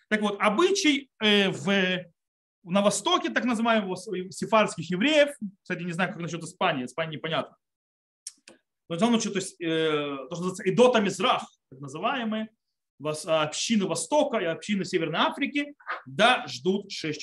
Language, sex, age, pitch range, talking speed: Russian, male, 30-49, 170-235 Hz, 140 wpm